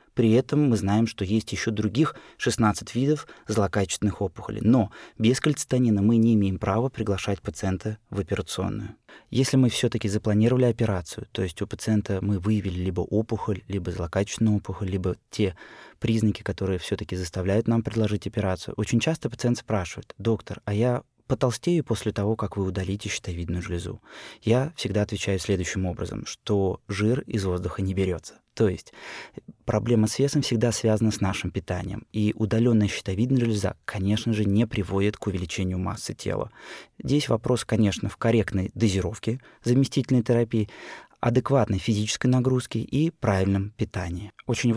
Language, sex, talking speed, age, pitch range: Russian, male, 150 wpm, 20-39, 100-120 Hz